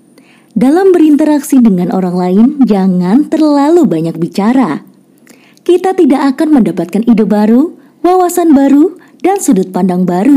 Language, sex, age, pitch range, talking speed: Indonesian, female, 20-39, 190-300 Hz, 120 wpm